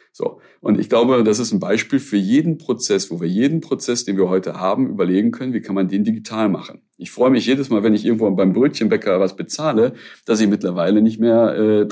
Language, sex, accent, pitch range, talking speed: German, male, German, 95-110 Hz, 225 wpm